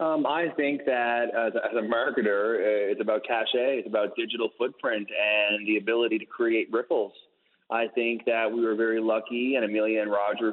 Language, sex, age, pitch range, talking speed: English, male, 30-49, 105-120 Hz, 175 wpm